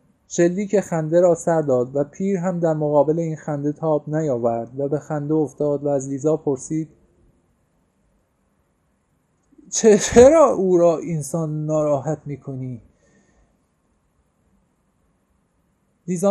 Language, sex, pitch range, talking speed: Persian, male, 160-255 Hz, 115 wpm